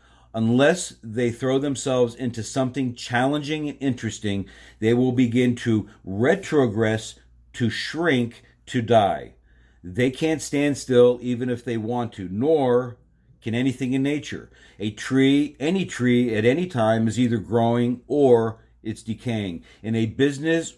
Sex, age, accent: male, 50-69, American